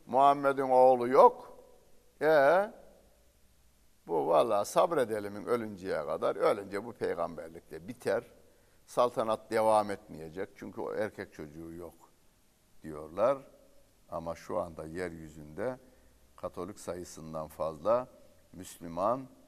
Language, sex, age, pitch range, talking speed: Turkish, male, 60-79, 90-130 Hz, 95 wpm